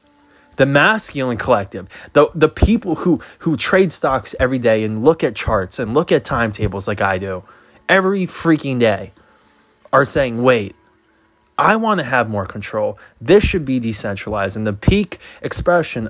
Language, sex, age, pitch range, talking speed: English, male, 20-39, 105-135 Hz, 155 wpm